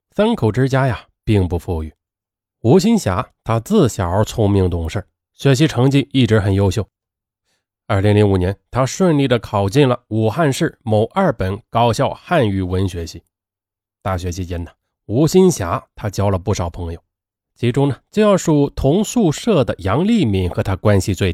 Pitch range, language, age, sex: 95-120 Hz, Chinese, 20-39, male